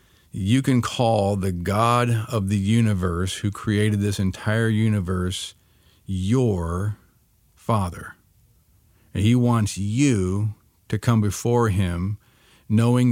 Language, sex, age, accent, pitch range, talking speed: English, male, 40-59, American, 95-110 Hz, 110 wpm